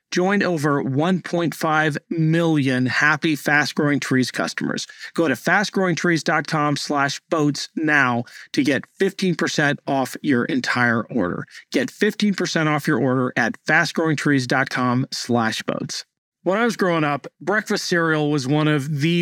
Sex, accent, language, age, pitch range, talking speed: male, American, English, 40-59, 145-185 Hz, 130 wpm